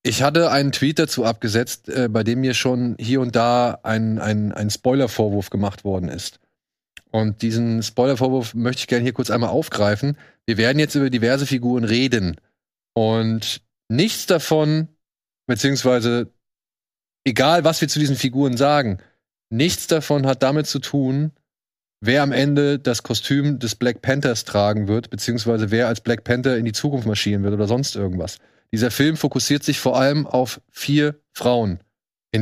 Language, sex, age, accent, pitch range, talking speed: German, male, 30-49, German, 115-140 Hz, 165 wpm